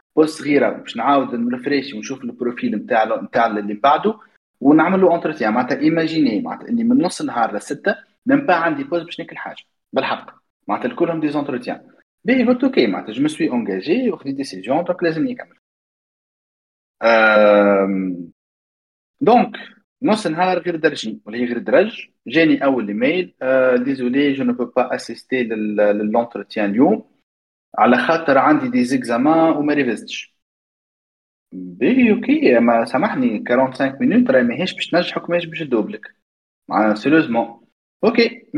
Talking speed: 140 wpm